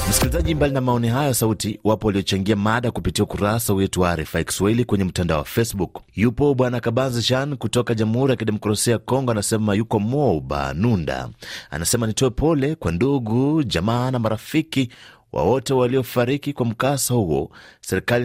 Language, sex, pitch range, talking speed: Swahili, male, 100-125 Hz, 145 wpm